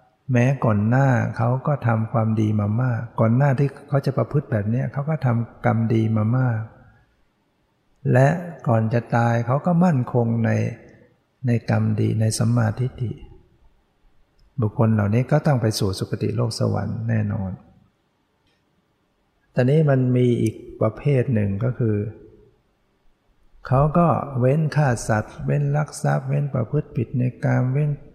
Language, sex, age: English, male, 60-79